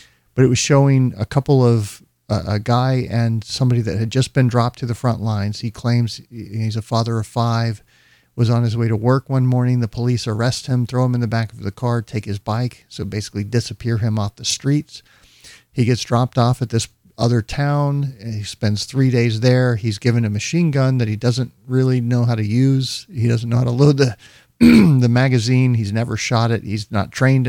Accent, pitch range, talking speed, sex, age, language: American, 105-125 Hz, 220 wpm, male, 50-69, English